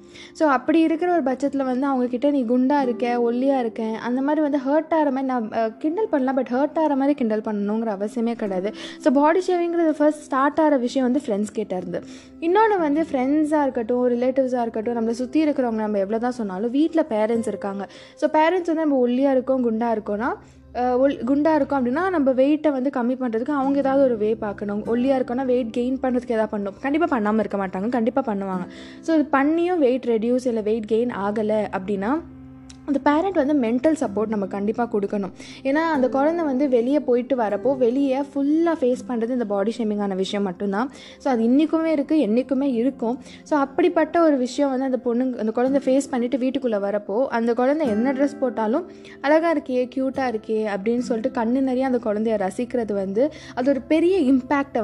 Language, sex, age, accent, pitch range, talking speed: Tamil, female, 20-39, native, 225-285 Hz, 180 wpm